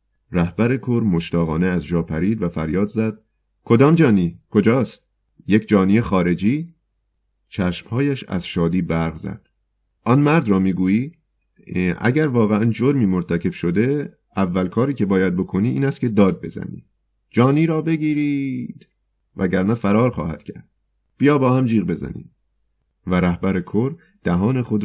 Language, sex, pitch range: Persian, male, 90-120 Hz